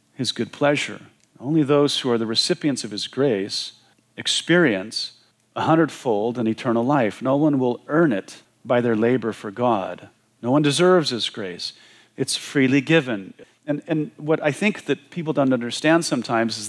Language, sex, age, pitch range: English, male, 40-59, 125-160 Hz